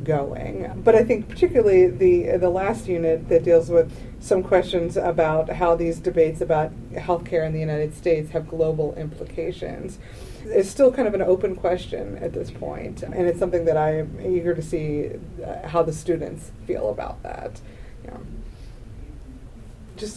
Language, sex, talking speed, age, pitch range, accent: English, female, 155 wpm, 30-49, 160-185 Hz, American